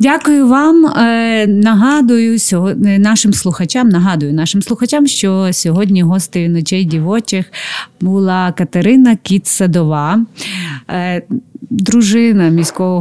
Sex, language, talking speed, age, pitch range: female, Ukrainian, 85 wpm, 30-49, 170-215 Hz